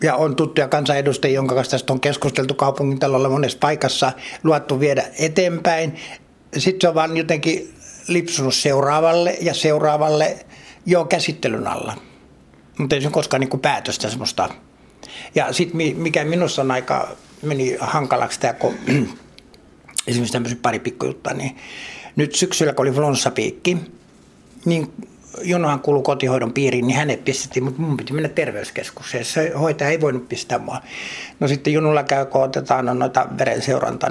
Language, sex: Finnish, male